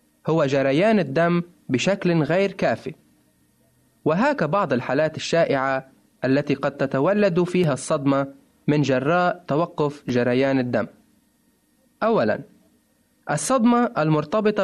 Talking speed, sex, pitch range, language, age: 95 wpm, male, 140-195 Hz, Arabic, 20-39